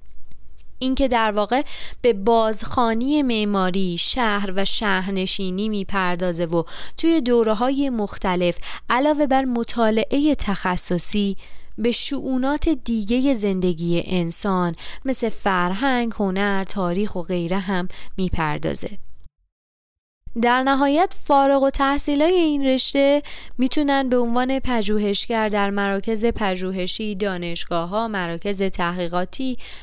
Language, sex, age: Persian, female, 20-39